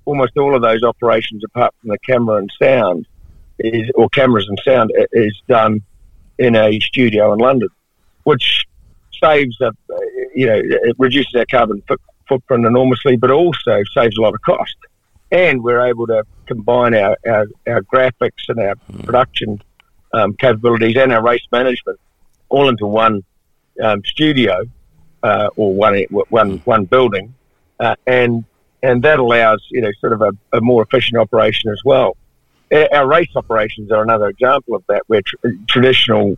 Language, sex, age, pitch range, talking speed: English, male, 50-69, 105-125 Hz, 155 wpm